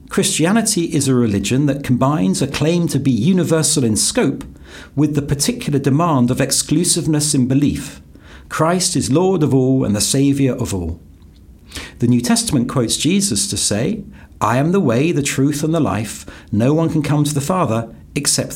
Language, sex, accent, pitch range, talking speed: English, male, British, 115-160 Hz, 180 wpm